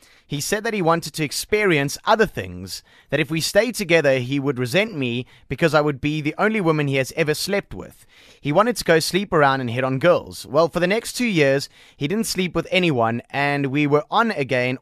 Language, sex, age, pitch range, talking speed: English, male, 30-49, 130-175 Hz, 225 wpm